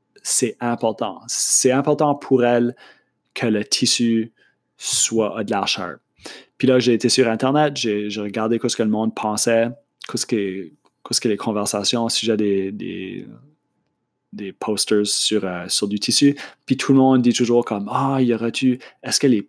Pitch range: 110-130 Hz